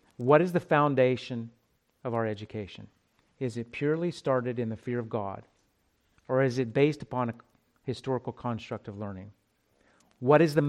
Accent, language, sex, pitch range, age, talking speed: American, English, male, 115-135 Hz, 40-59, 165 wpm